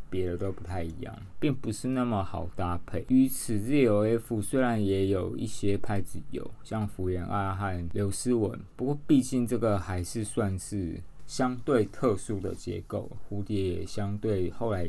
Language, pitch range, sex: Chinese, 90-115 Hz, male